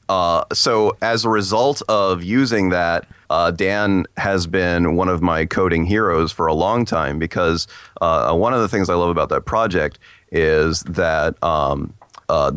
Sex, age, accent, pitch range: male, 30-49, American, 80-100 Hz